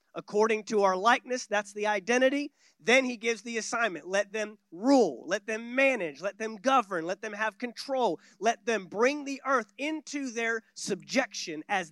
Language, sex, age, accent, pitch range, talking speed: English, male, 30-49, American, 195-250 Hz, 170 wpm